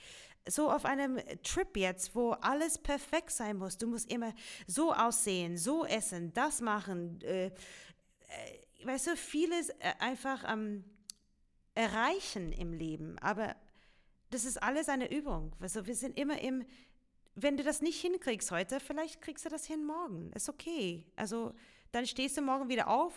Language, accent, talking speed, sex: German, German, 160 wpm, female